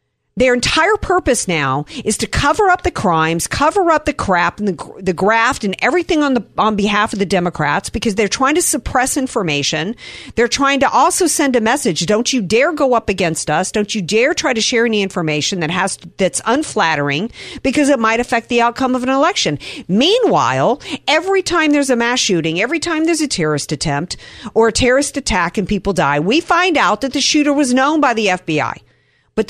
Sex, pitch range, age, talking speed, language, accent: female, 170-275 Hz, 50-69, 205 wpm, English, American